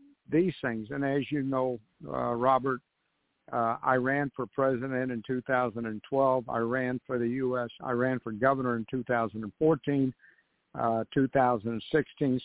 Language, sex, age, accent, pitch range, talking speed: English, male, 60-79, American, 120-135 Hz, 135 wpm